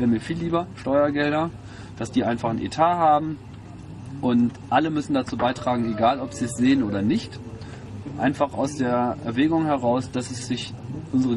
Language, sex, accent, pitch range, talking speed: German, male, German, 110-130 Hz, 170 wpm